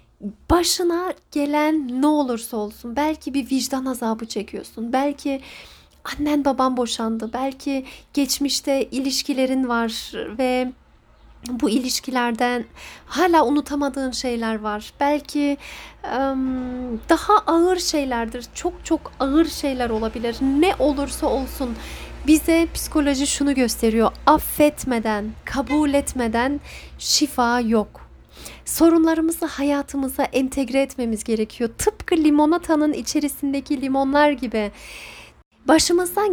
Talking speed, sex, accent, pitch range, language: 95 wpm, female, native, 235-295 Hz, Turkish